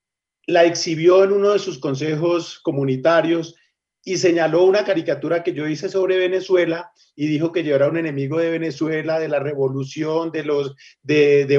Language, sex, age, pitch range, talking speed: English, male, 40-59, 150-195 Hz, 170 wpm